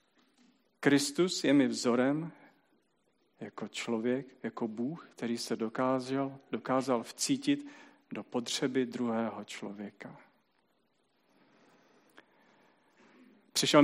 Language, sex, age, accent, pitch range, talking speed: Czech, male, 40-59, native, 120-140 Hz, 80 wpm